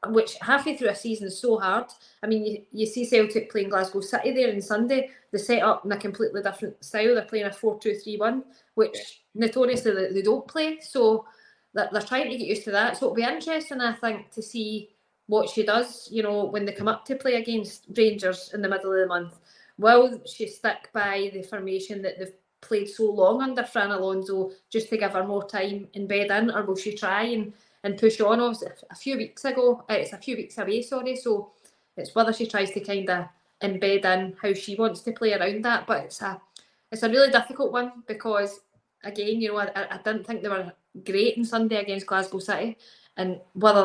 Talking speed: 220 wpm